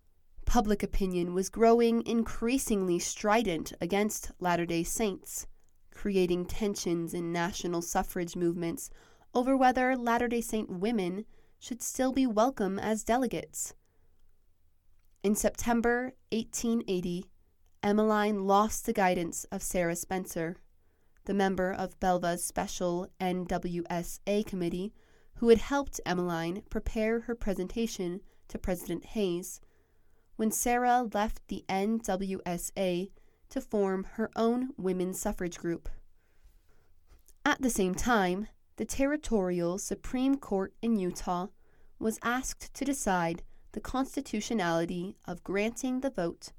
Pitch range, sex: 175-225 Hz, female